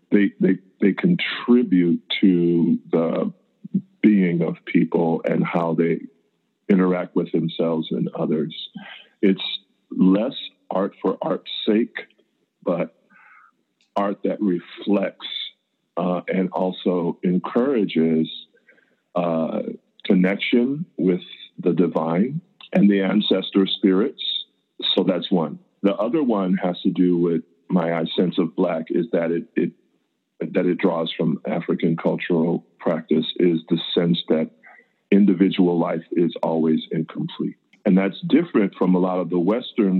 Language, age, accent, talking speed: English, 50-69, American, 125 wpm